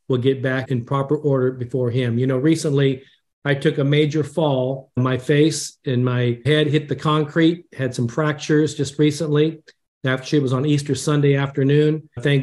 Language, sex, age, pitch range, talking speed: English, male, 40-59, 135-160 Hz, 180 wpm